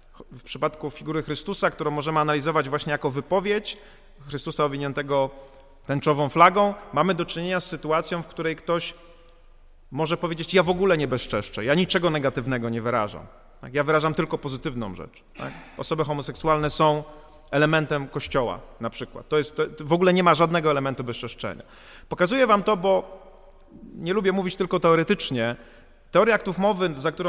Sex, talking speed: male, 155 wpm